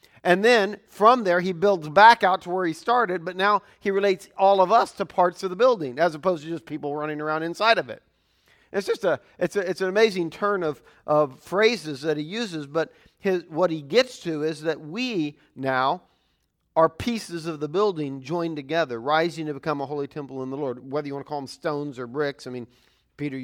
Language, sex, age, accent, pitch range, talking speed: English, male, 40-59, American, 120-170 Hz, 225 wpm